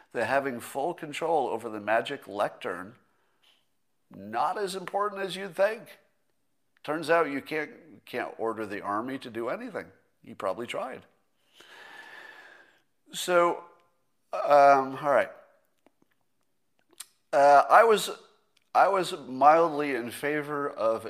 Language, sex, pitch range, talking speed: English, male, 115-175 Hz, 115 wpm